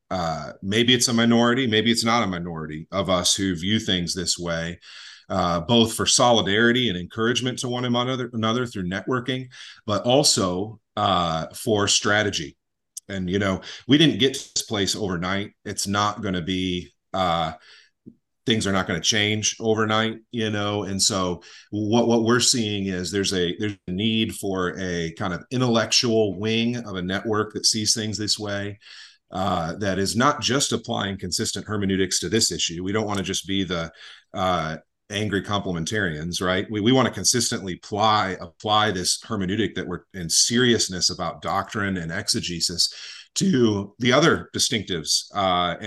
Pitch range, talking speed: 90-115 Hz, 170 wpm